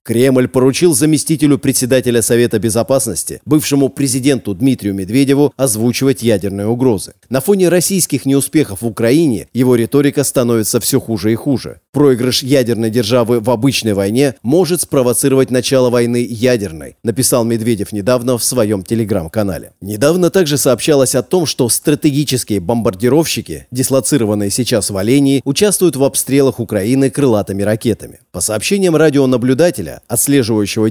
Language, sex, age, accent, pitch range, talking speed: Russian, male, 30-49, native, 115-145 Hz, 125 wpm